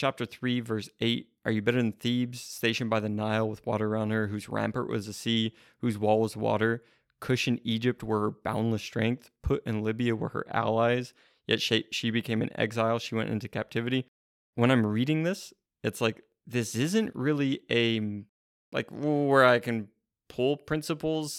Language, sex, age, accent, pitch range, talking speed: English, male, 20-39, American, 110-130 Hz, 180 wpm